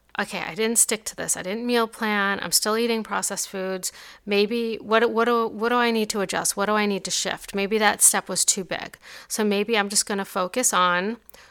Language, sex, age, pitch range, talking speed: English, female, 40-59, 190-225 Hz, 235 wpm